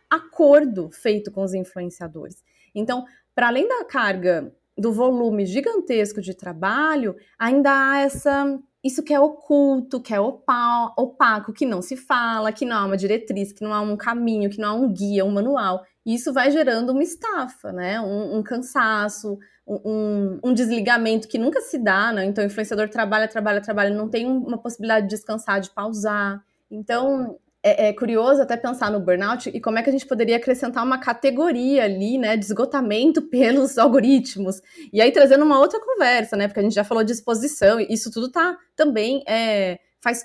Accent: Brazilian